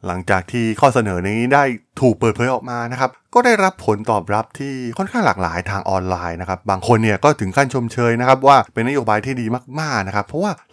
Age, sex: 20-39, male